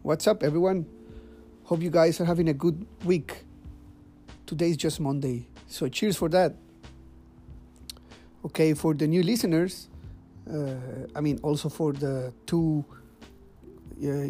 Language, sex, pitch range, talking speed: English, male, 125-165 Hz, 130 wpm